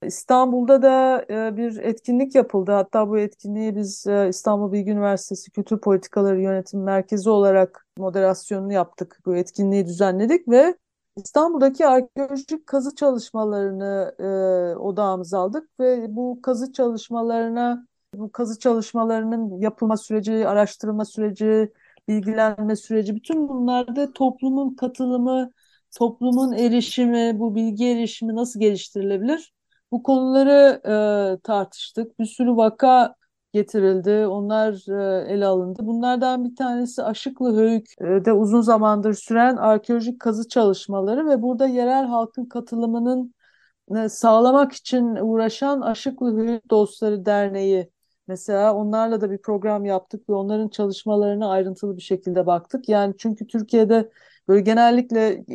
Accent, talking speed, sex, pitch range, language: native, 115 wpm, female, 200-245 Hz, Turkish